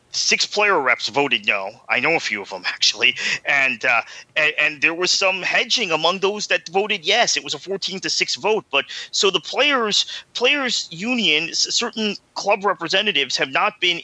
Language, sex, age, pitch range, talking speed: English, male, 30-49, 130-170 Hz, 190 wpm